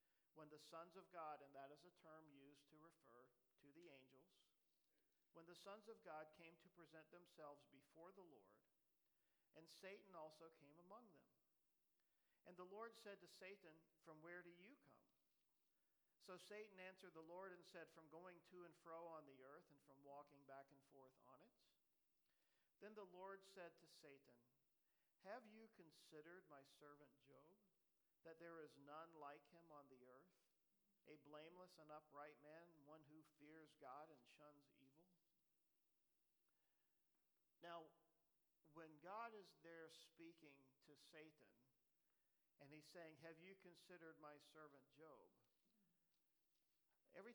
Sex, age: male, 50-69